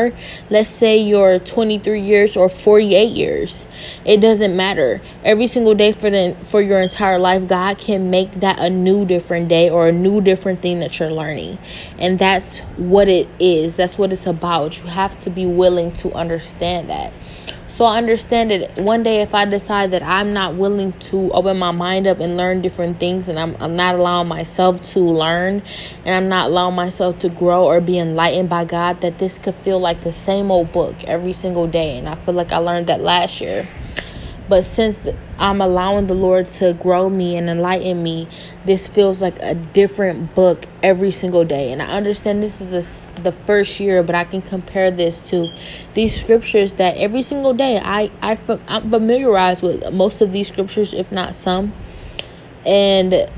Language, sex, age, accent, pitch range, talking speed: English, female, 20-39, American, 175-200 Hz, 190 wpm